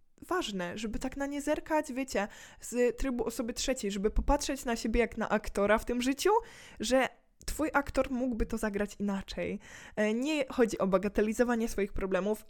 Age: 10-29